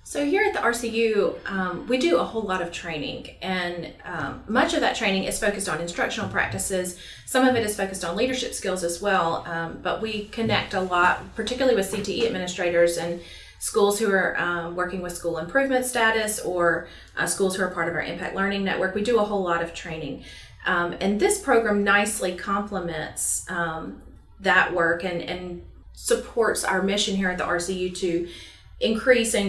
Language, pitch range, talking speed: English, 175-210 Hz, 185 wpm